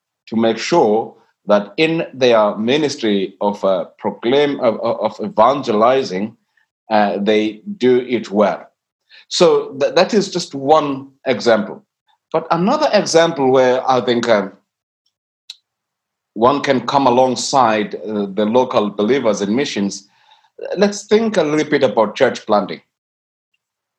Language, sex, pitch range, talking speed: English, male, 105-155 Hz, 130 wpm